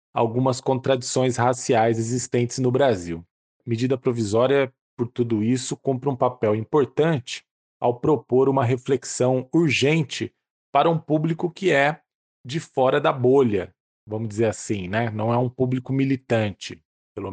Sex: male